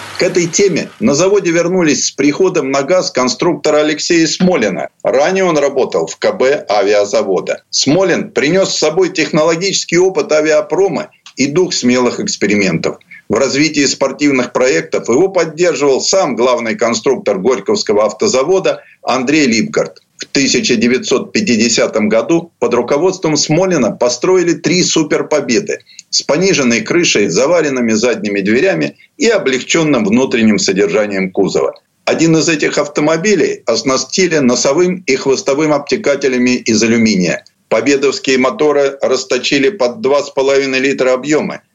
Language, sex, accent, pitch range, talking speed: Russian, male, native, 130-180 Hz, 115 wpm